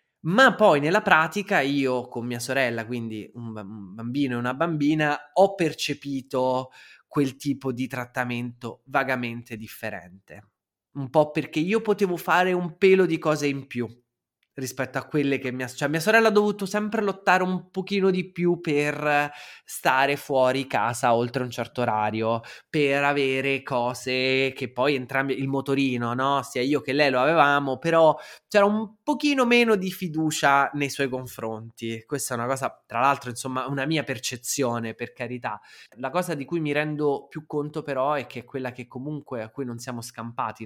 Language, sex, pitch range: Italian, male, 115-150 Hz